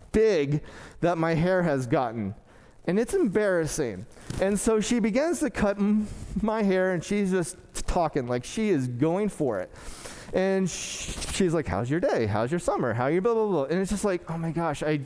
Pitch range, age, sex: 155-220 Hz, 30-49, male